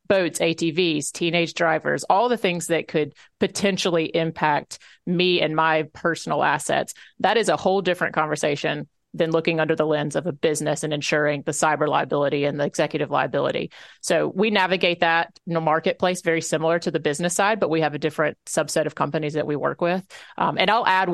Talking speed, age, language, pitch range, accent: 195 wpm, 30-49, English, 155-180 Hz, American